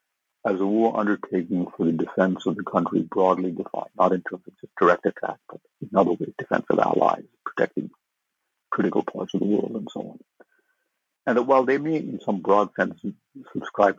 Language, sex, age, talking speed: English, male, 60-79, 190 wpm